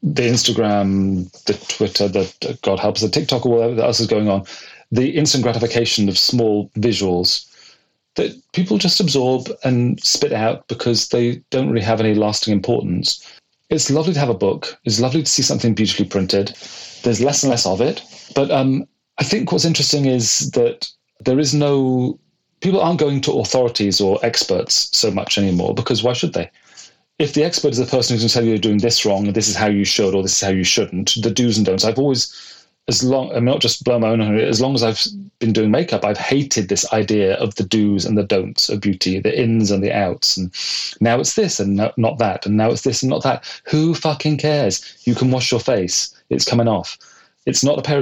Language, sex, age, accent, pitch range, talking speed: English, male, 40-59, British, 105-135 Hz, 220 wpm